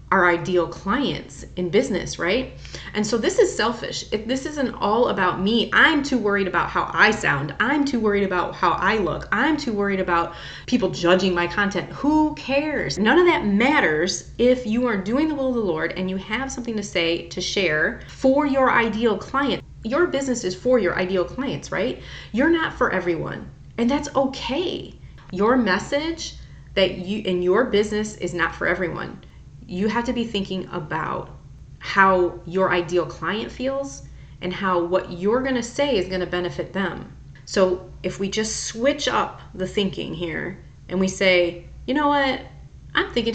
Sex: female